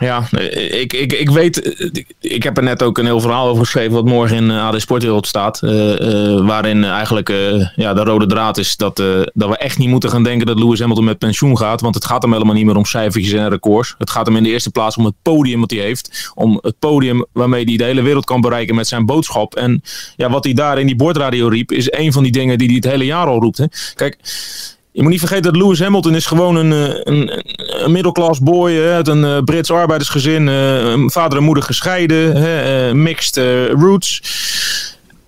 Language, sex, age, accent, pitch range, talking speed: Dutch, male, 30-49, Dutch, 120-165 Hz, 230 wpm